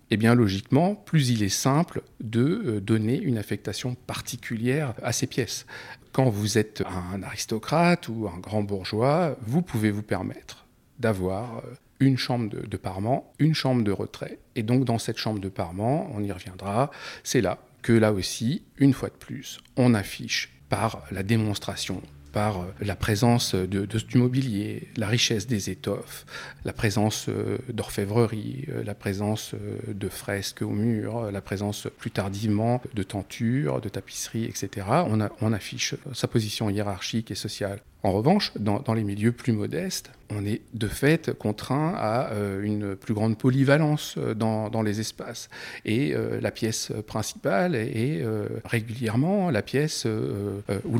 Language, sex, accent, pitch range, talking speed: French, male, French, 105-130 Hz, 150 wpm